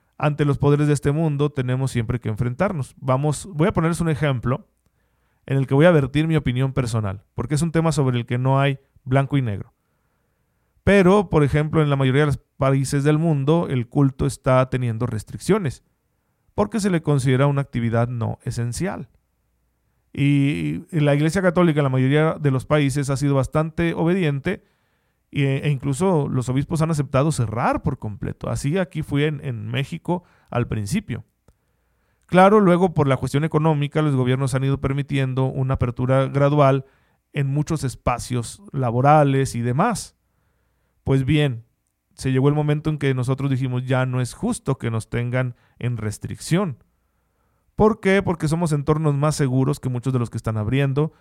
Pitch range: 125-155 Hz